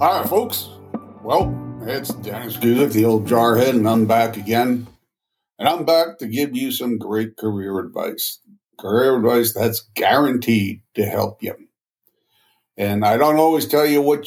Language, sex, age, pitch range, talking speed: English, male, 60-79, 110-130 Hz, 160 wpm